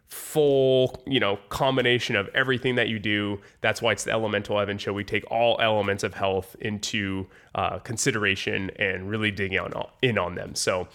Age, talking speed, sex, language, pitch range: 20-39, 175 wpm, male, English, 105-130 Hz